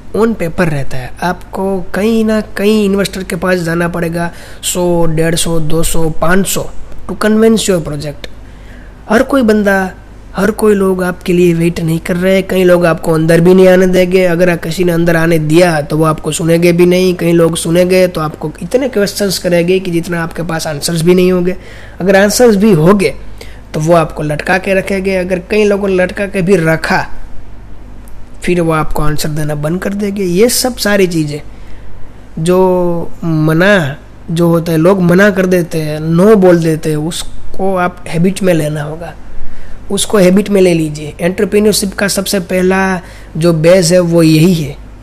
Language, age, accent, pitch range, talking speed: Hindi, 20-39, native, 155-190 Hz, 180 wpm